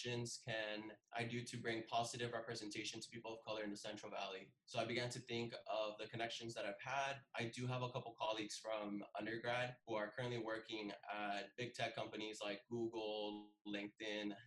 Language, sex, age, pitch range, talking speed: English, male, 20-39, 110-120 Hz, 185 wpm